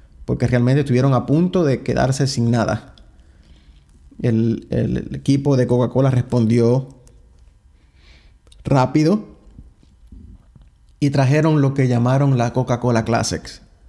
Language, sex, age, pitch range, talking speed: English, male, 30-49, 100-140 Hz, 105 wpm